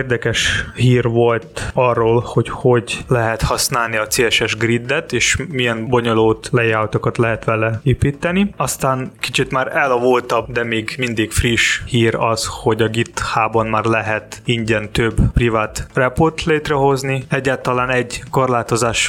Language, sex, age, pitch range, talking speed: Hungarian, male, 20-39, 110-125 Hz, 130 wpm